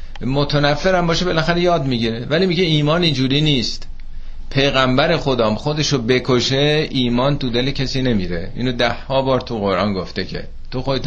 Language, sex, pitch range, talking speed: Persian, male, 85-140 Hz, 150 wpm